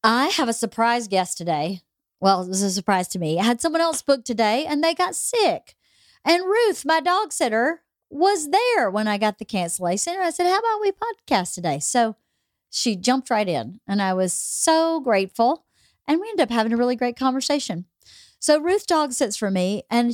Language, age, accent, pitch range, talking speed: English, 40-59, American, 205-305 Hz, 205 wpm